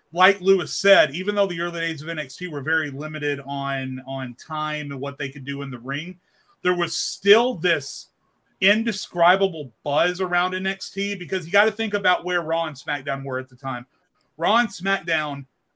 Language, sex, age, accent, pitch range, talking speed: English, male, 30-49, American, 145-190 Hz, 185 wpm